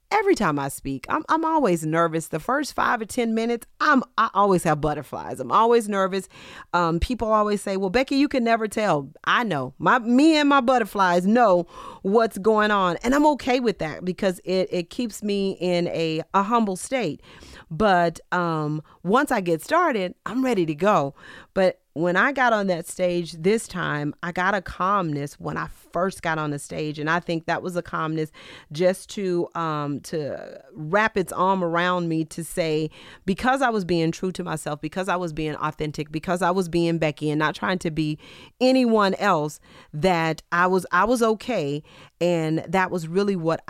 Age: 40-59